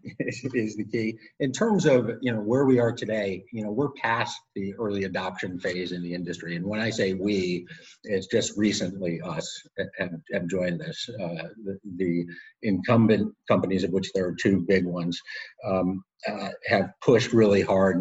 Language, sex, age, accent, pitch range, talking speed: English, male, 50-69, American, 95-130 Hz, 175 wpm